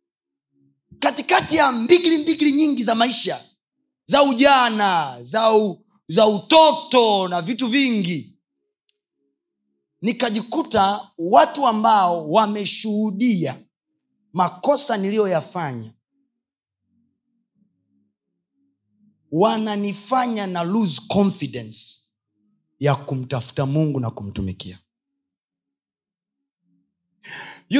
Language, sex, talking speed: Swahili, male, 70 wpm